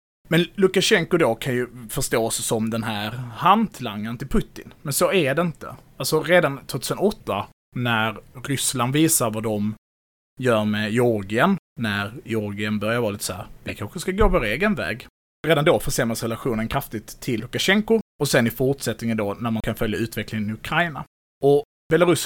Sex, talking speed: male, 170 wpm